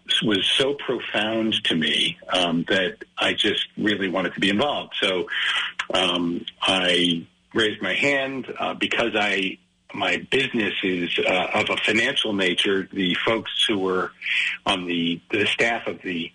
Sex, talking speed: male, 150 wpm